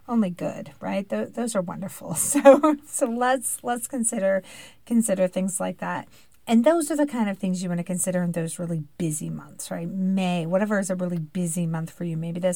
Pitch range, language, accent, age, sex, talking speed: 185-230 Hz, English, American, 40-59, female, 210 wpm